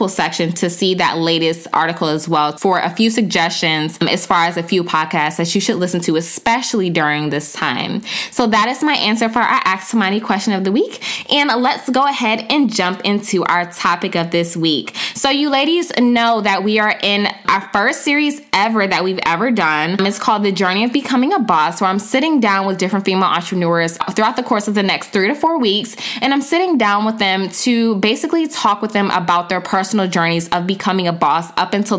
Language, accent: English, American